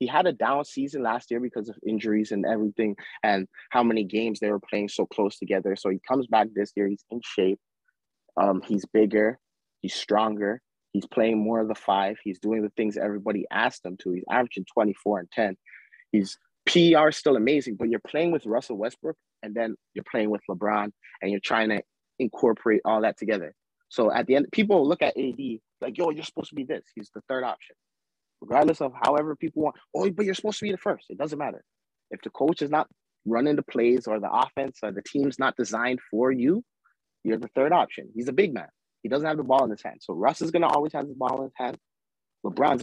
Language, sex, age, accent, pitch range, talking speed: English, male, 30-49, American, 105-140 Hz, 225 wpm